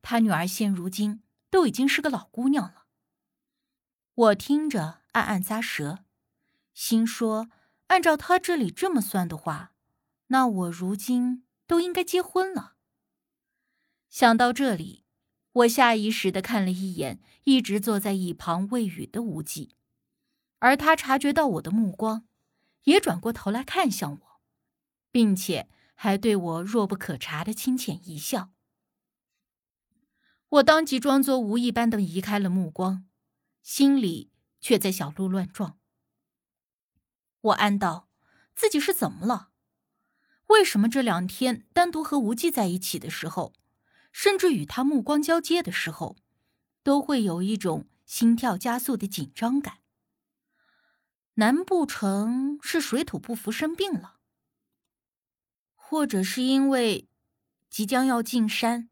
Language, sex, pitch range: Chinese, female, 195-275 Hz